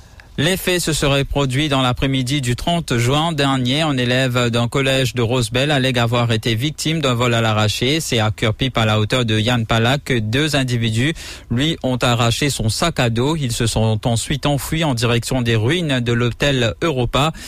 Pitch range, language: 115-145 Hz, English